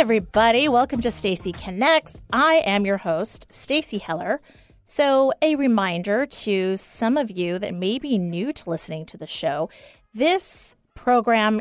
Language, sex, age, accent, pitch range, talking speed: English, female, 30-49, American, 180-245 Hz, 150 wpm